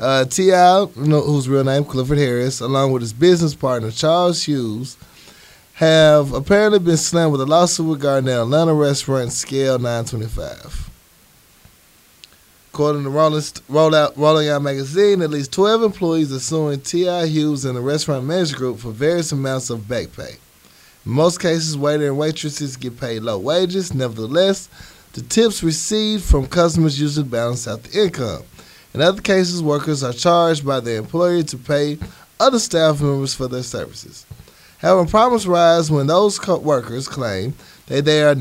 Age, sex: 20-39, male